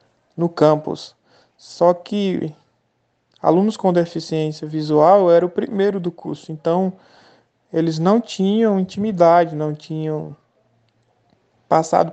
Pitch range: 155-185 Hz